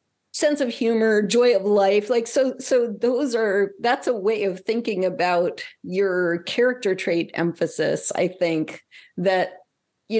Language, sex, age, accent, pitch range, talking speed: English, female, 40-59, American, 175-230 Hz, 145 wpm